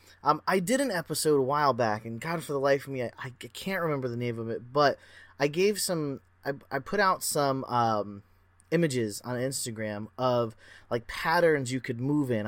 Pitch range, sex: 115-145 Hz, male